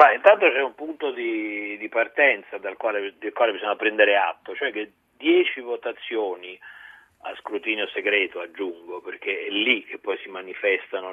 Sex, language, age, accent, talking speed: male, Italian, 40-59, native, 160 wpm